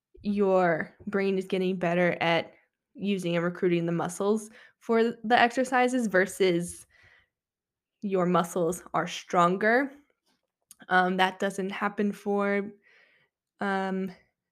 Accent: American